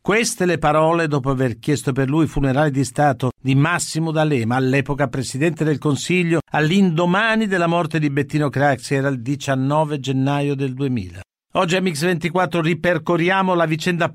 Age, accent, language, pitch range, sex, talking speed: 50-69, native, Italian, 145-175 Hz, male, 155 wpm